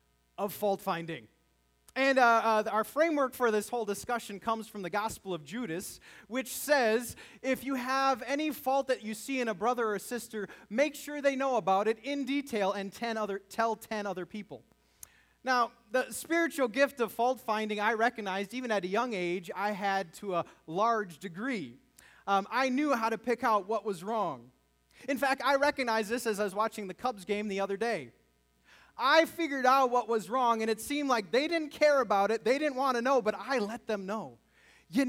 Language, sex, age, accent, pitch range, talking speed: English, male, 20-39, American, 195-260 Hz, 200 wpm